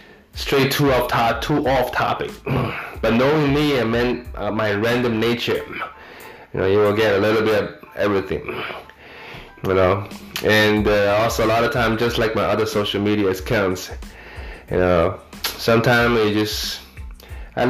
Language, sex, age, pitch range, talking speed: English, male, 20-39, 100-120 Hz, 155 wpm